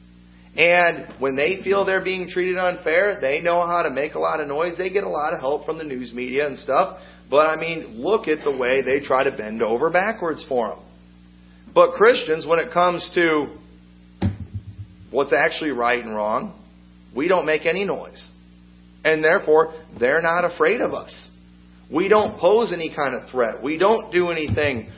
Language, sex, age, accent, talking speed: English, male, 40-59, American, 185 wpm